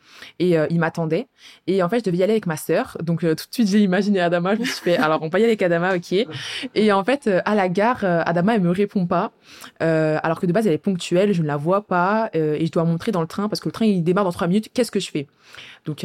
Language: French